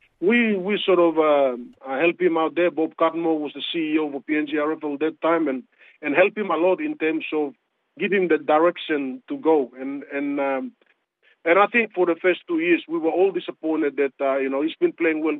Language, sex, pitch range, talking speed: English, male, 135-165 Hz, 225 wpm